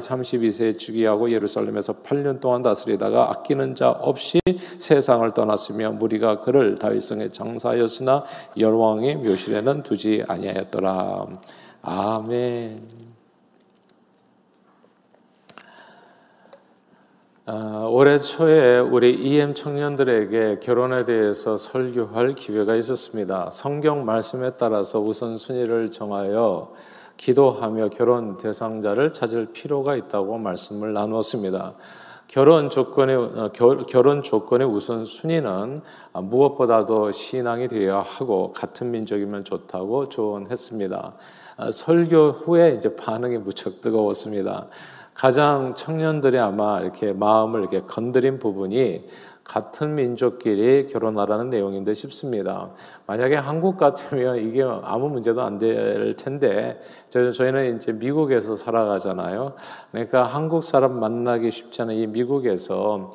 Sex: male